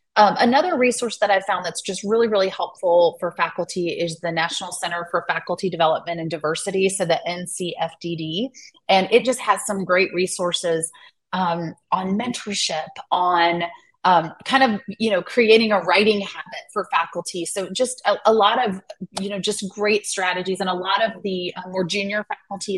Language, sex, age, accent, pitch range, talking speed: English, female, 30-49, American, 170-210 Hz, 175 wpm